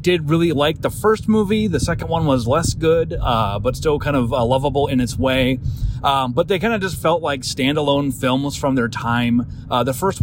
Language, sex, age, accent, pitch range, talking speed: English, male, 30-49, American, 120-155 Hz, 225 wpm